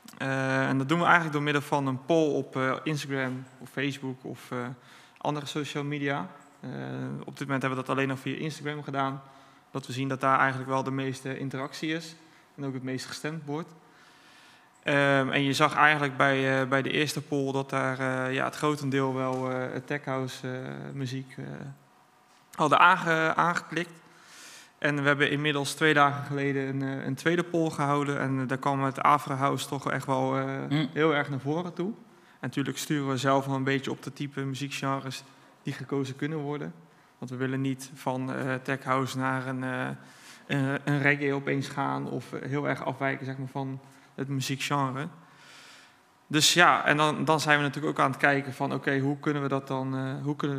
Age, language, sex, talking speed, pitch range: 20-39, Dutch, male, 185 wpm, 130-145 Hz